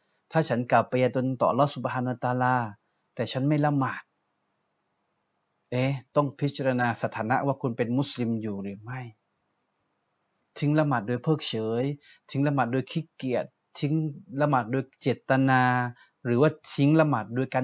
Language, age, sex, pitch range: Thai, 20-39, male, 120-145 Hz